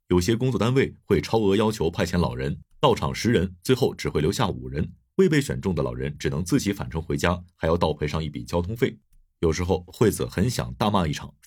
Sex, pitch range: male, 80-110 Hz